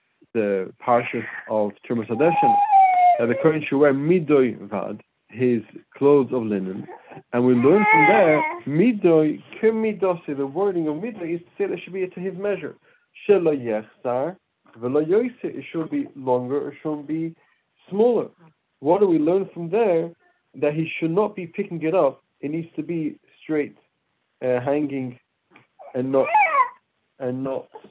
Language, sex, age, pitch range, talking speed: English, male, 50-69, 125-185 Hz, 150 wpm